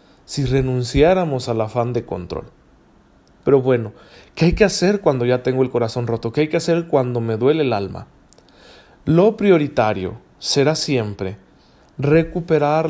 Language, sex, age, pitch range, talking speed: Spanish, male, 40-59, 115-145 Hz, 150 wpm